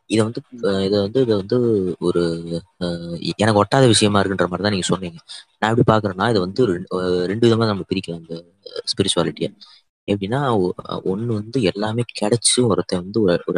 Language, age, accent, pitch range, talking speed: Tamil, 20-39, native, 95-110 Hz, 145 wpm